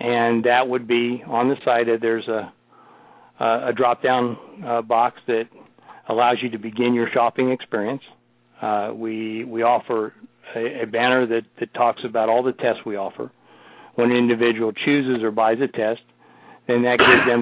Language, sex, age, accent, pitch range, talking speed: English, male, 50-69, American, 110-120 Hz, 180 wpm